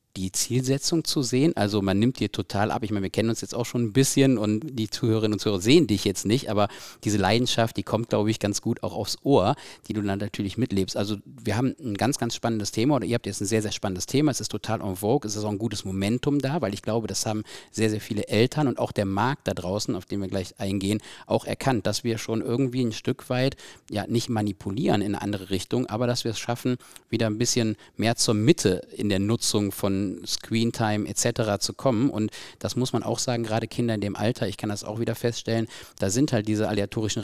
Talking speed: 245 wpm